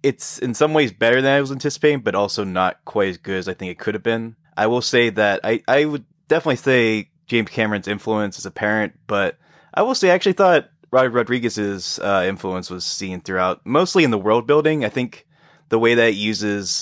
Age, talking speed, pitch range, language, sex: 20-39, 220 wpm, 95-125 Hz, English, male